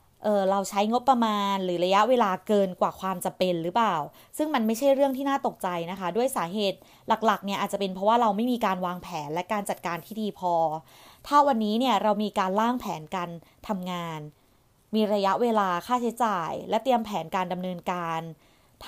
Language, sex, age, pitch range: Thai, female, 20-39, 180-220 Hz